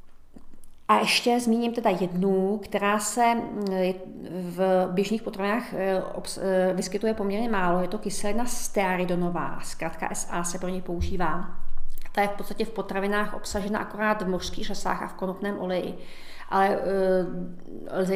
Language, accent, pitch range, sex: Czech, native, 185-205 Hz, female